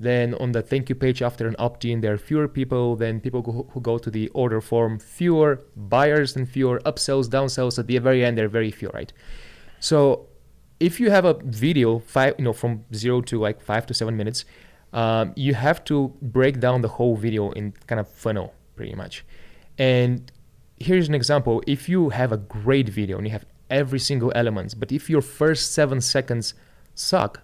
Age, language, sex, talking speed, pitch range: 20-39, English, male, 195 wpm, 110-135 Hz